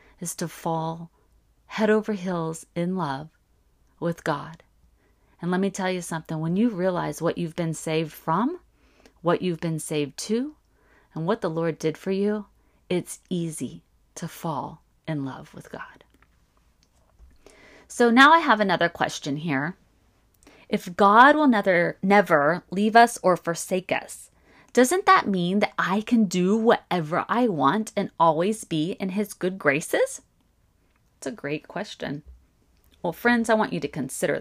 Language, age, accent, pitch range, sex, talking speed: English, 30-49, American, 150-205 Hz, female, 155 wpm